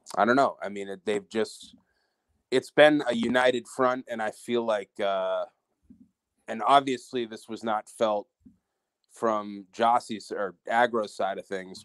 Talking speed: 145 wpm